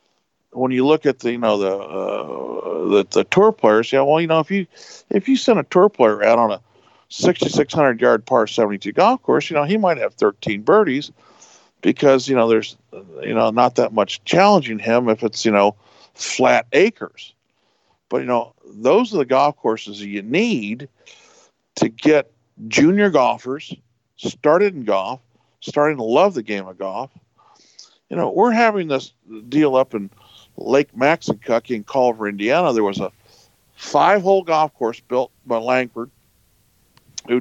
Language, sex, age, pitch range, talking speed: English, male, 50-69, 110-160 Hz, 170 wpm